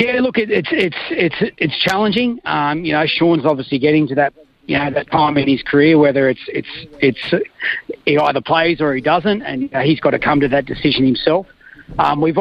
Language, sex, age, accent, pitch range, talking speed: English, male, 40-59, Australian, 140-170 Hz, 220 wpm